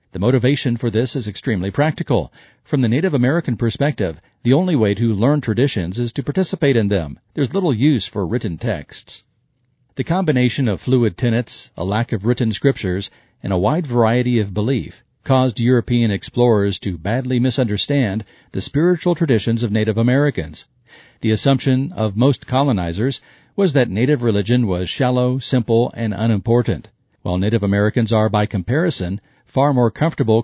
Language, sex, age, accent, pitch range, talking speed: English, male, 50-69, American, 110-135 Hz, 160 wpm